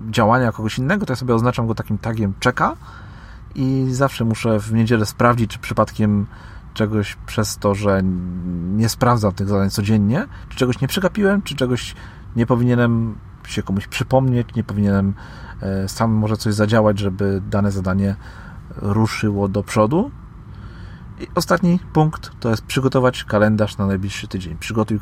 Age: 40-59